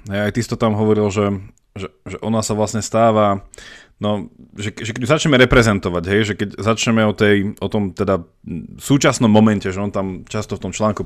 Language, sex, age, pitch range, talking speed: Slovak, male, 20-39, 100-115 Hz, 195 wpm